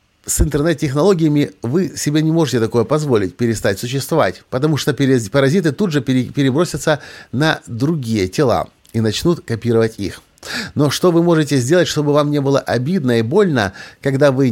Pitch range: 110-145 Hz